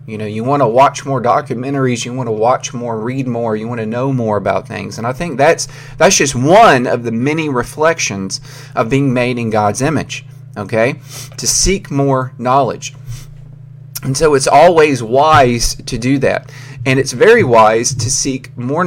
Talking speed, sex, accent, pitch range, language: 190 wpm, male, American, 120-140 Hz, English